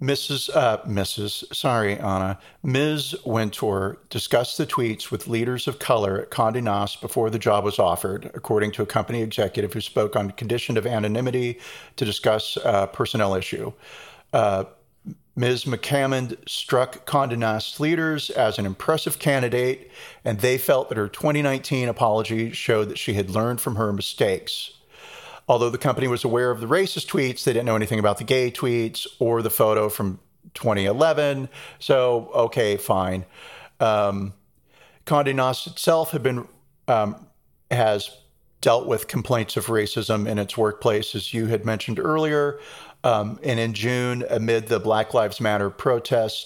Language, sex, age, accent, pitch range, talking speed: English, male, 40-59, American, 105-130 Hz, 155 wpm